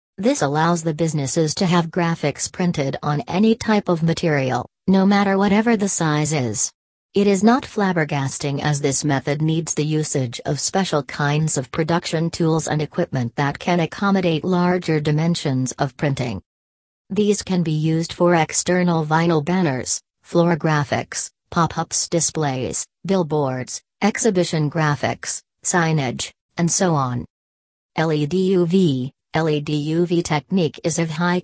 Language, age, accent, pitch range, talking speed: English, 40-59, American, 145-175 Hz, 135 wpm